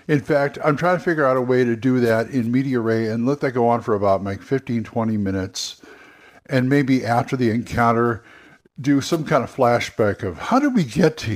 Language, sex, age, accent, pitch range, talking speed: English, male, 60-79, American, 110-140 Hz, 220 wpm